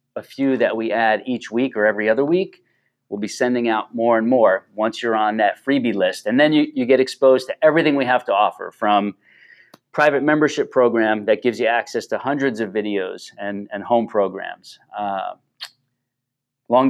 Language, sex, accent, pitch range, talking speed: English, male, American, 110-140 Hz, 190 wpm